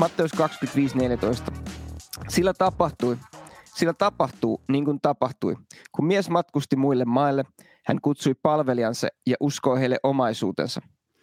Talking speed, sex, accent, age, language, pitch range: 120 wpm, male, Finnish, 30-49, English, 125-155 Hz